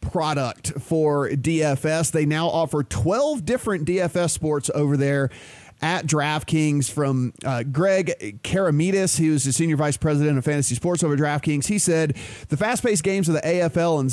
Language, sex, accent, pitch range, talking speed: English, male, American, 140-175 Hz, 165 wpm